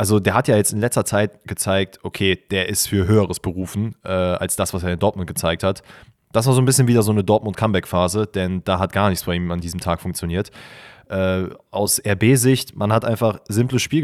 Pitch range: 95-115 Hz